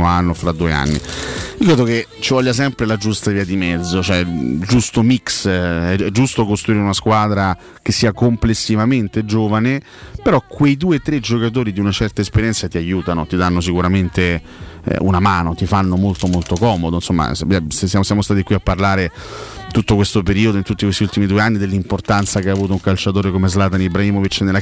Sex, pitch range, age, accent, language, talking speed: male, 90-110 Hz, 30-49, native, Italian, 185 wpm